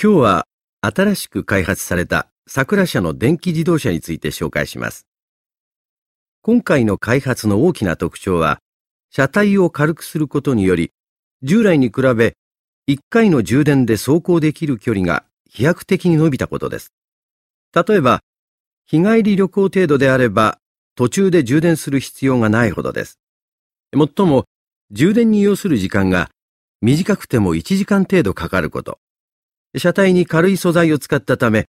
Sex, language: male, Vietnamese